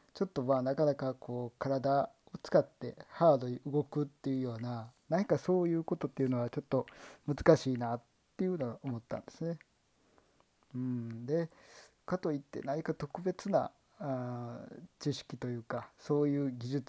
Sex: male